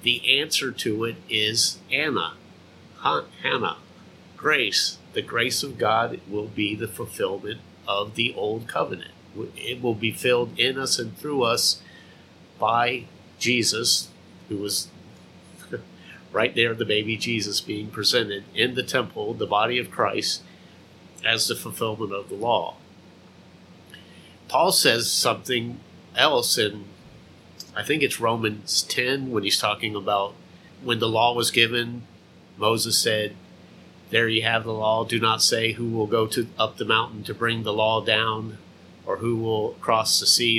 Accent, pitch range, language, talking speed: American, 105-120 Hz, English, 150 wpm